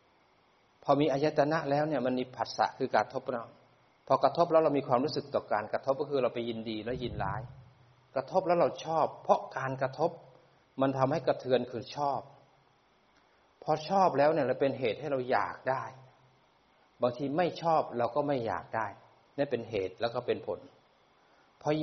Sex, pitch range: male, 120-150 Hz